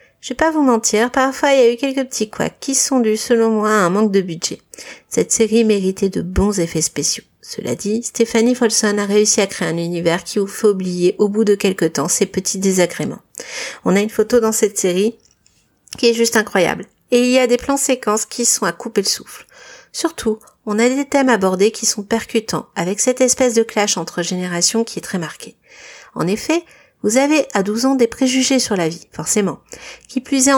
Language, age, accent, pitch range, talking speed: French, 50-69, French, 195-240 Hz, 220 wpm